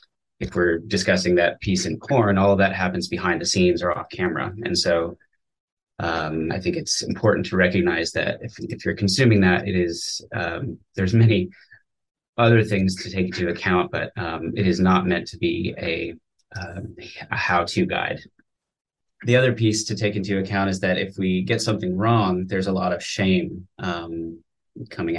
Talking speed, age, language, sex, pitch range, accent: 185 wpm, 30-49, English, male, 90-110 Hz, American